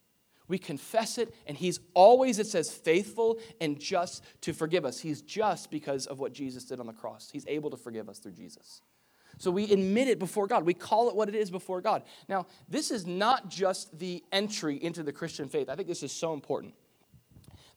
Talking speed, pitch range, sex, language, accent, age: 215 wpm, 135-190 Hz, male, English, American, 30-49